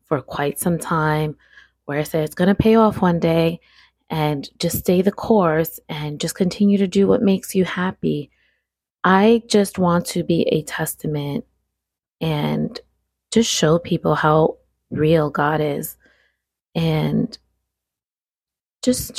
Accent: American